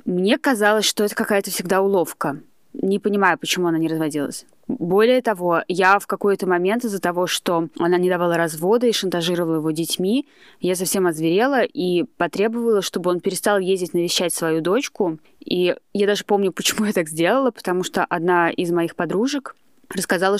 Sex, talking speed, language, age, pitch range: female, 170 wpm, Russian, 20-39, 170-200 Hz